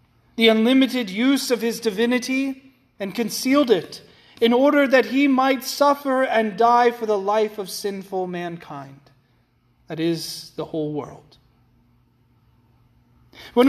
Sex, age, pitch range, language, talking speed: male, 30-49, 165-260 Hz, English, 125 wpm